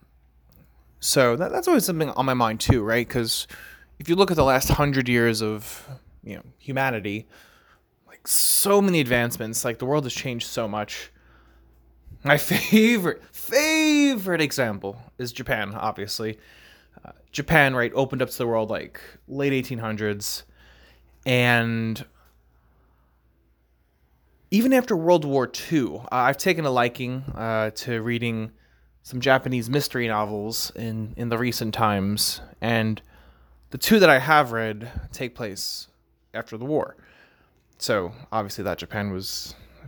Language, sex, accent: English, male, American